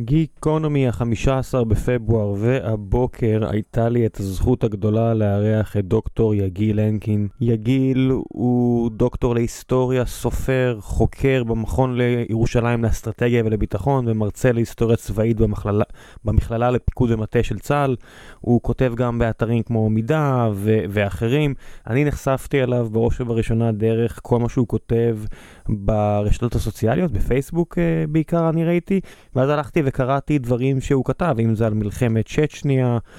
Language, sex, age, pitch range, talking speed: Hebrew, male, 20-39, 110-125 Hz, 125 wpm